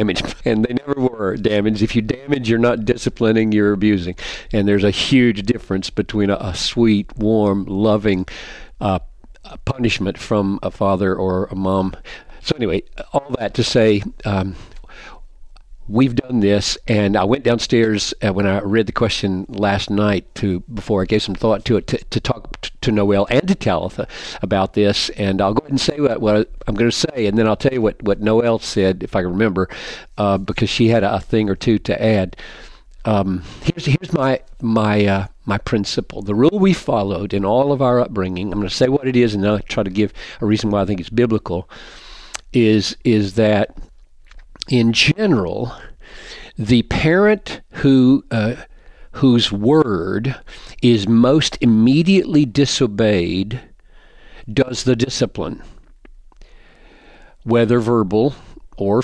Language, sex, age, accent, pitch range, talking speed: English, male, 50-69, American, 100-125 Hz, 165 wpm